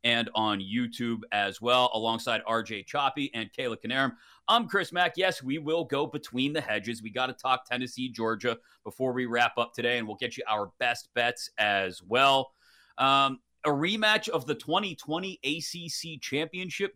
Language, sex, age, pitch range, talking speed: English, male, 30-49, 135-170 Hz, 175 wpm